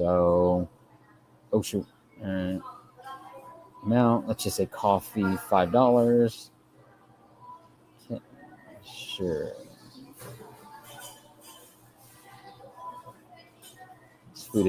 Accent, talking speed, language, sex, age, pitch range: American, 50 wpm, English, male, 30-49, 95-120 Hz